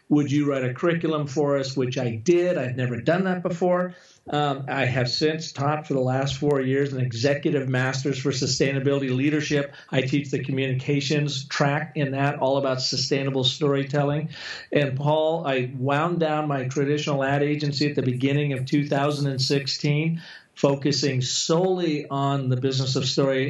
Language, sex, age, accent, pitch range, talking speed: English, male, 50-69, American, 135-155 Hz, 160 wpm